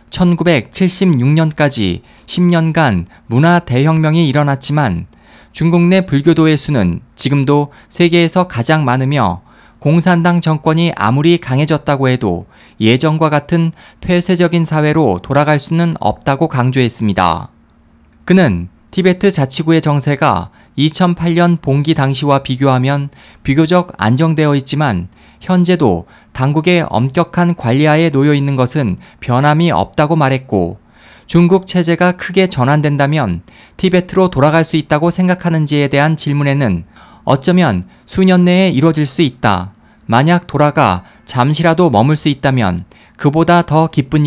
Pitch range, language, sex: 125-170 Hz, Korean, male